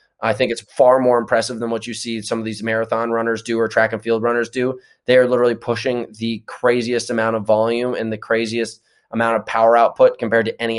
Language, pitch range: English, 110-125 Hz